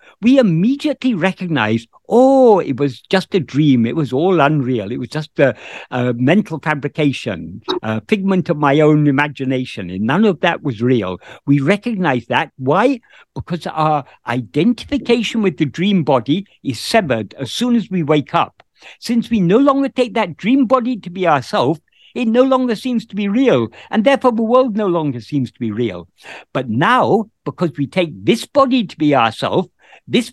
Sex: male